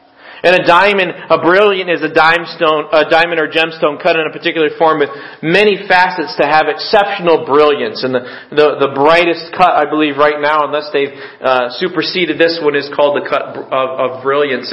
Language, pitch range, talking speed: English, 150-190 Hz, 190 wpm